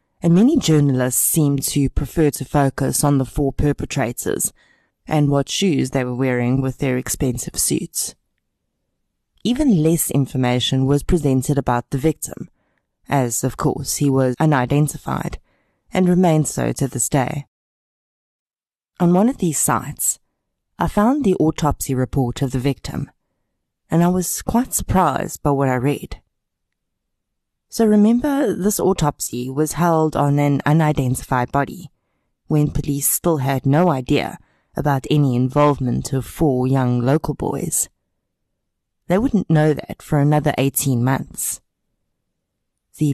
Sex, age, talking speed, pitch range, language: female, 20-39, 135 wpm, 125-155 Hz, English